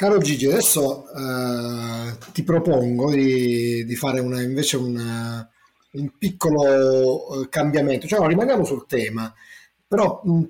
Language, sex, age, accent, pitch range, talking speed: Italian, male, 30-49, native, 125-150 Hz, 130 wpm